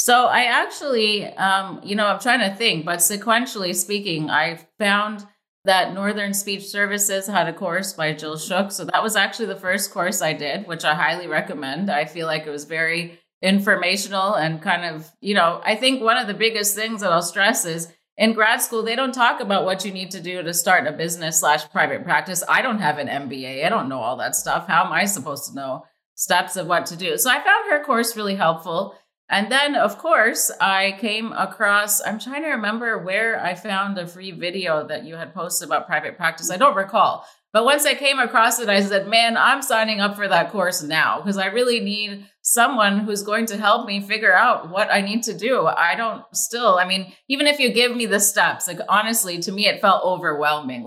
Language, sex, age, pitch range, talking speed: English, female, 30-49, 175-220 Hz, 220 wpm